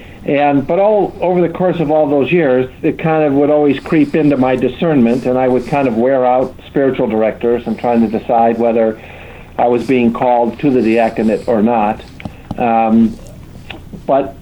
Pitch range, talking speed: 115-145 Hz, 185 wpm